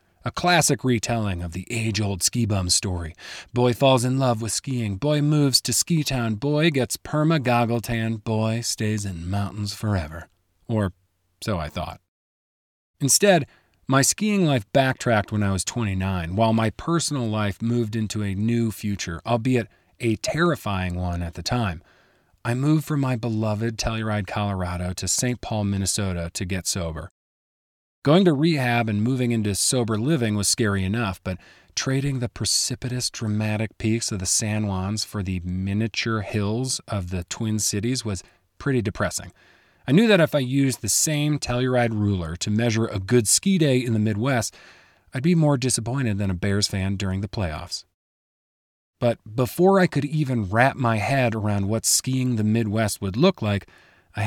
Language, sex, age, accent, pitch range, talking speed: English, male, 40-59, American, 95-125 Hz, 170 wpm